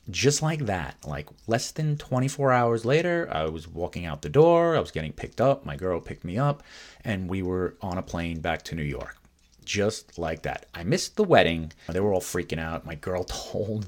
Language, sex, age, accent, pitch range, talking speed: English, male, 30-49, American, 80-105 Hz, 215 wpm